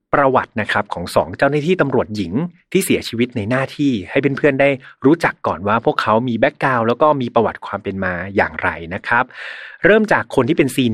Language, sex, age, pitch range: Thai, male, 30-49, 110-145 Hz